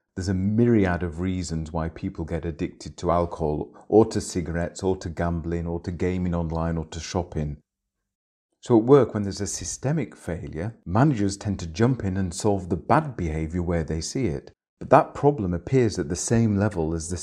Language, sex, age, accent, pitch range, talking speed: English, male, 40-59, British, 85-110 Hz, 195 wpm